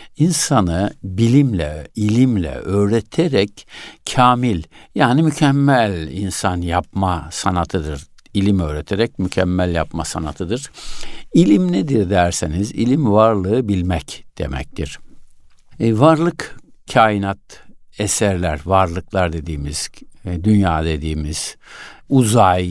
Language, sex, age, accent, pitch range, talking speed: Turkish, male, 60-79, native, 90-120 Hz, 80 wpm